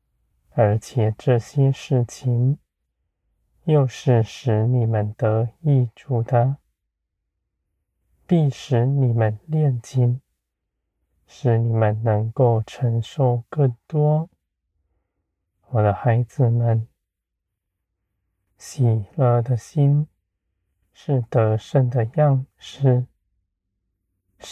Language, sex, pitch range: Chinese, male, 90-130 Hz